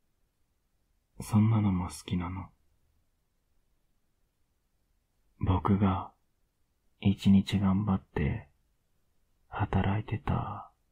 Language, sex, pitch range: Japanese, male, 80-100 Hz